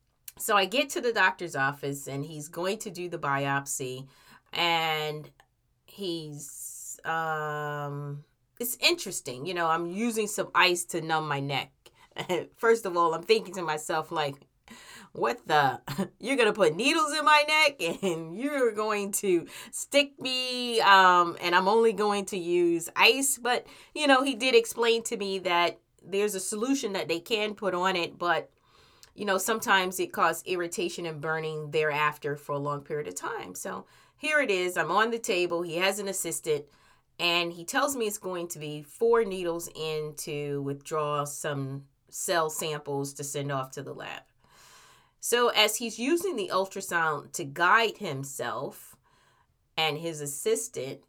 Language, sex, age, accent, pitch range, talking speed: English, female, 30-49, American, 150-215 Hz, 165 wpm